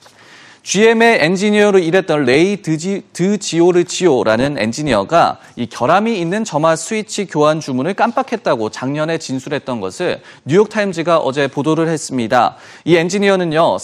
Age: 30-49